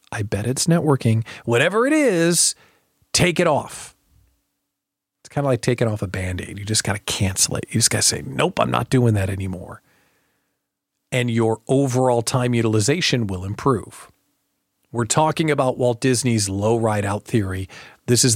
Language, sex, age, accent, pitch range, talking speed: English, male, 40-59, American, 110-145 Hz, 170 wpm